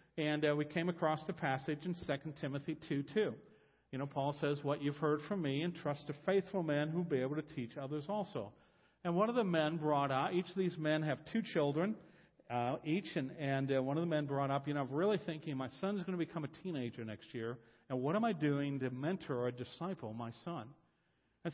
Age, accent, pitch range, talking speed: 50-69, American, 140-180 Hz, 230 wpm